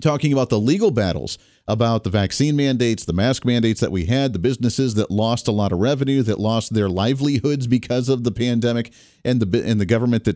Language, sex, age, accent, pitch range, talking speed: English, male, 40-59, American, 110-145 Hz, 215 wpm